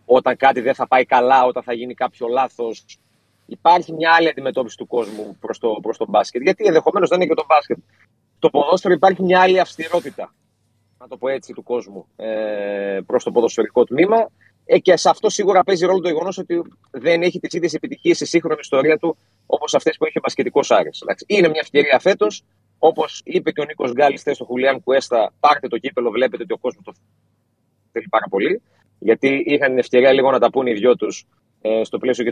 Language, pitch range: Greek, 115-165 Hz